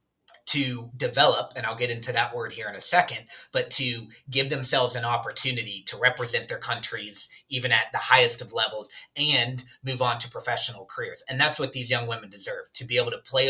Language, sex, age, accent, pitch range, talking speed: English, male, 30-49, American, 120-160 Hz, 205 wpm